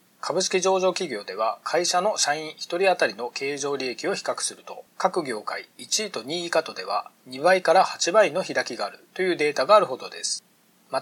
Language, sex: Japanese, male